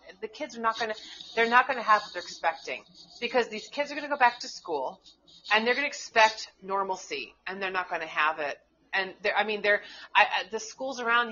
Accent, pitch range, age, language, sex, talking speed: American, 180-225 Hz, 30-49, English, female, 240 wpm